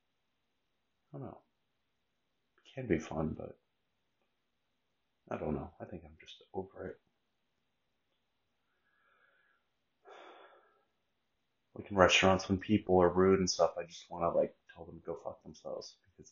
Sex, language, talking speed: male, English, 130 wpm